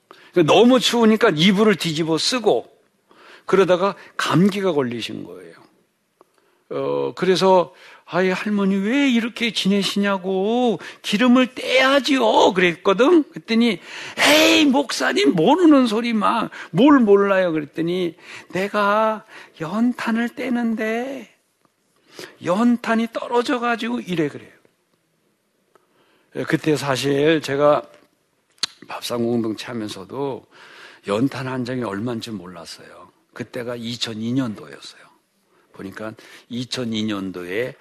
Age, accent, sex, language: 60-79, native, male, Korean